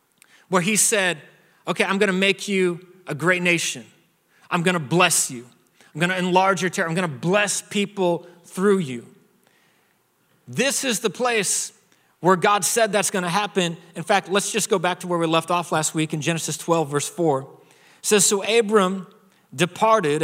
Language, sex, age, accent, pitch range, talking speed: English, male, 40-59, American, 145-185 Hz, 175 wpm